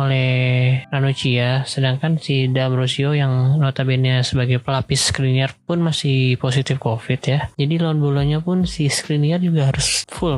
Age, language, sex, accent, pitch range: 20-39, Chinese, male, Indonesian, 120-140 Hz